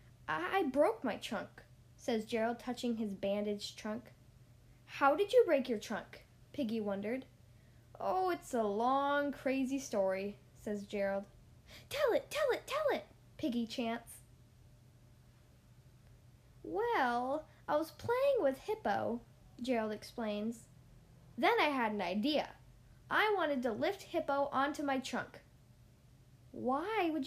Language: English